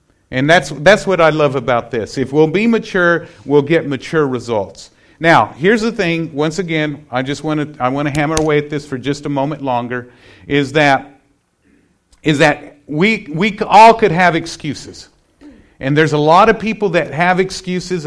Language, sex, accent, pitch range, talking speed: English, male, American, 150-205 Hz, 190 wpm